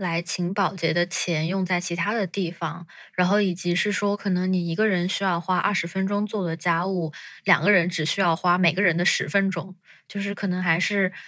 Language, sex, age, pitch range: Chinese, female, 20-39, 170-195 Hz